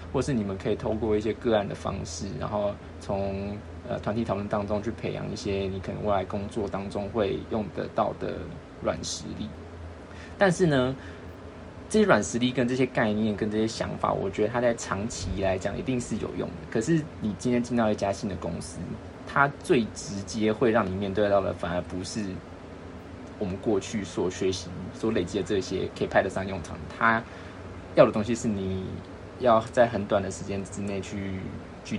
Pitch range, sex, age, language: 90-110 Hz, male, 20-39, Chinese